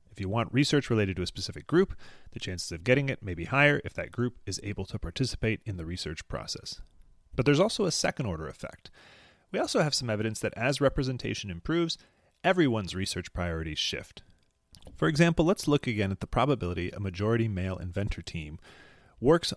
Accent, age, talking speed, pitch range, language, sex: American, 30-49, 185 wpm, 90-125 Hz, English, male